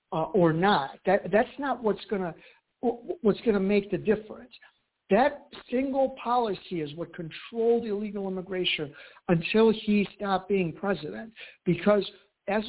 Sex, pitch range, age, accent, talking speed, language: male, 185-225 Hz, 60-79, American, 140 wpm, English